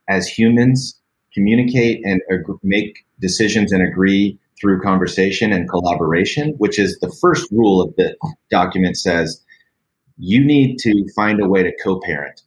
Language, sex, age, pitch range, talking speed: English, male, 30-49, 90-110 Hz, 140 wpm